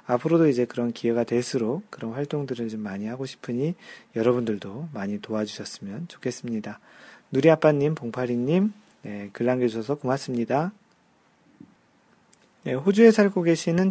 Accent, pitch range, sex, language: native, 120-165 Hz, male, Korean